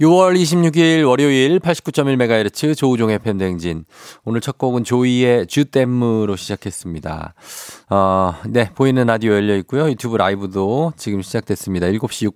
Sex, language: male, Korean